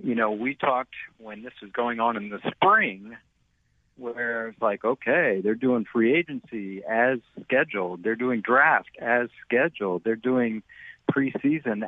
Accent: American